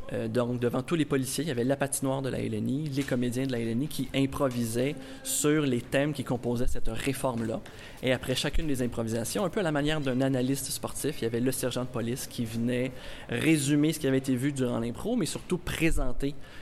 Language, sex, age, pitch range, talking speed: French, male, 20-39, 120-140 Hz, 220 wpm